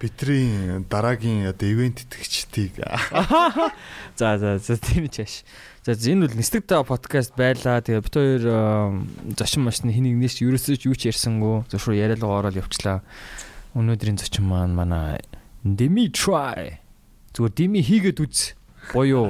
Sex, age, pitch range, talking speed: male, 20-39, 105-130 Hz, 50 wpm